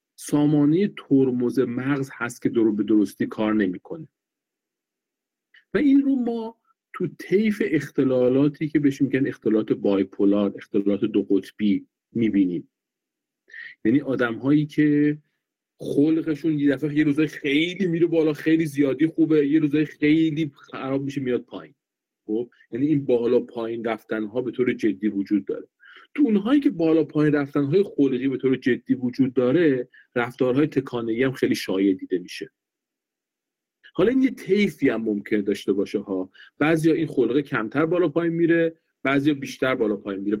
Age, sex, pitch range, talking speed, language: 40-59, male, 125-160 Hz, 150 wpm, Persian